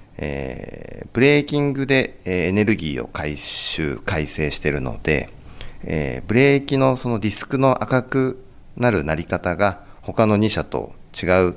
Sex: male